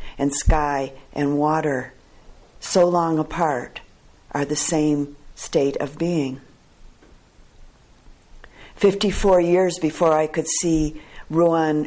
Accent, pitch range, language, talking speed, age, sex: American, 145-165 Hz, English, 100 wpm, 50-69, female